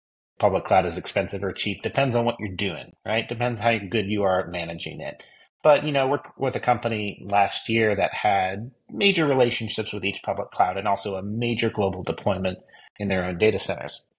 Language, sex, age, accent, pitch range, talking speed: English, male, 30-49, American, 95-120 Hz, 205 wpm